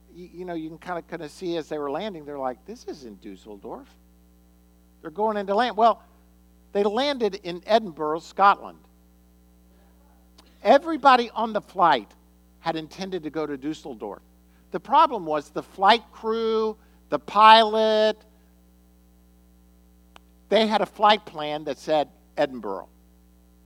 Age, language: 50-69, English